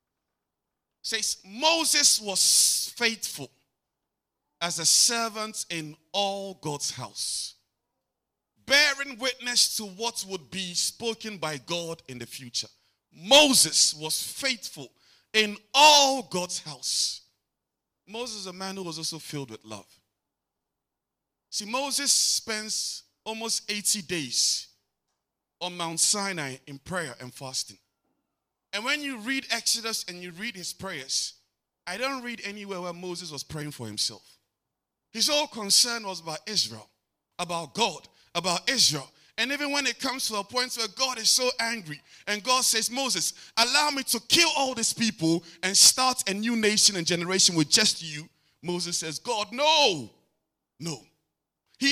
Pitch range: 160-245 Hz